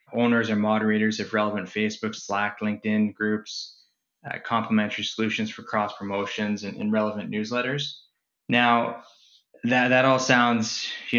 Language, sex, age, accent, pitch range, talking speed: English, male, 20-39, American, 105-120 Hz, 135 wpm